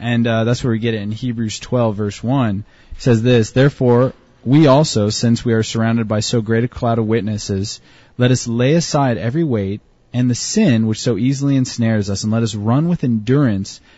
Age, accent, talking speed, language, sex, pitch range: 20-39, American, 210 wpm, English, male, 105-125 Hz